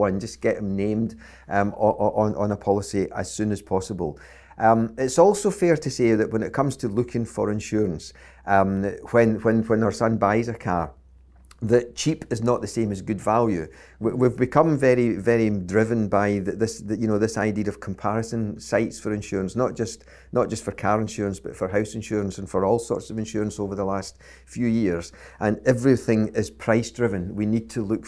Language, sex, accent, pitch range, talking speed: English, male, British, 100-115 Hz, 190 wpm